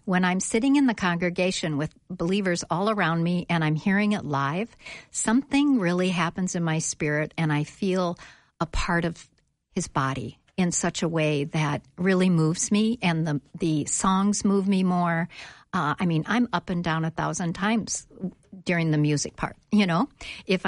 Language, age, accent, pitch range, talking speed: English, 50-69, American, 165-220 Hz, 180 wpm